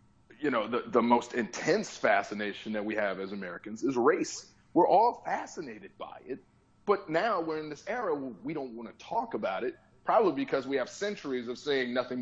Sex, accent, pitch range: male, American, 120-185 Hz